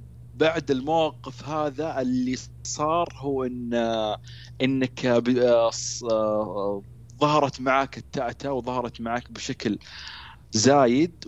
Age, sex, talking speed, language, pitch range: 30-49, male, 85 wpm, Arabic, 85-130 Hz